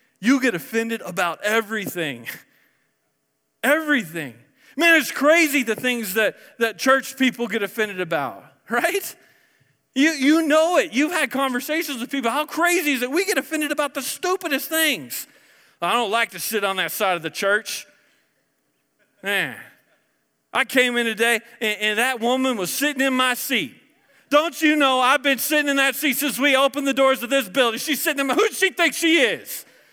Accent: American